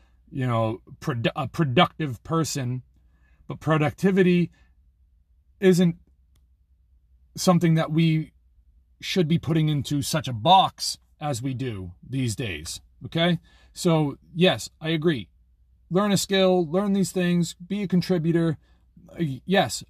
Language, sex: English, male